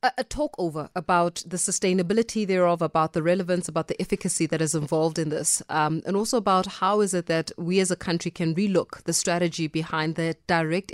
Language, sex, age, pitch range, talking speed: English, female, 20-39, 165-195 Hz, 205 wpm